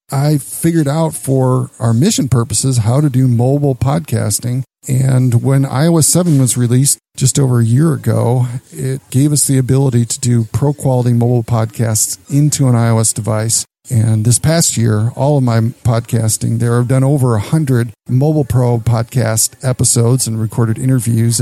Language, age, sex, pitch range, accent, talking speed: English, 40-59, male, 115-145 Hz, American, 160 wpm